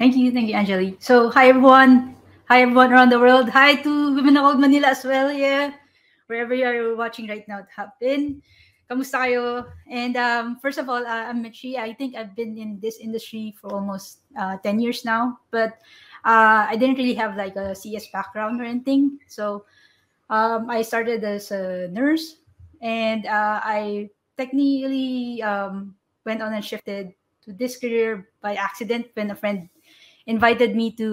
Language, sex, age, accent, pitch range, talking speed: English, female, 20-39, Filipino, 205-255 Hz, 175 wpm